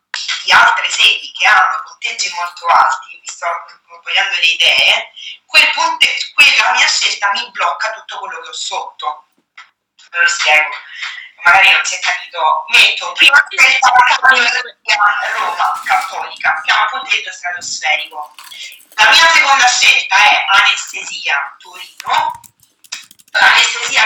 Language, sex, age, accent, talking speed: Italian, female, 20-39, native, 125 wpm